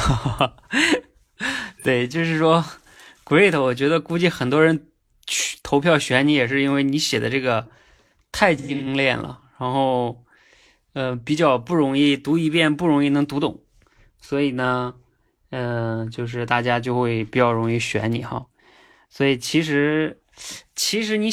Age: 20-39